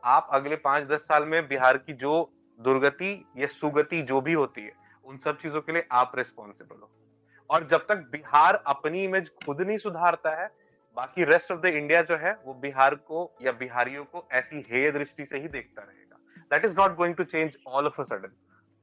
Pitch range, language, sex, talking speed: 150-210 Hz, Hindi, male, 130 wpm